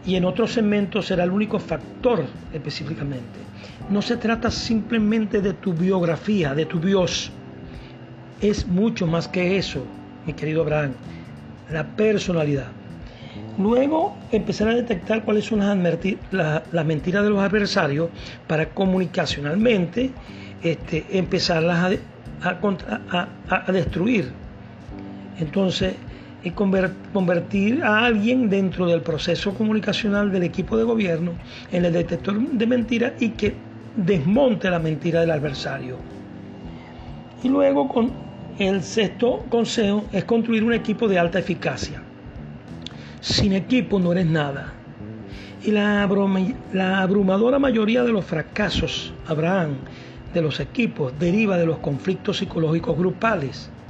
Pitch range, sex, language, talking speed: 160-215 Hz, male, Spanish, 120 wpm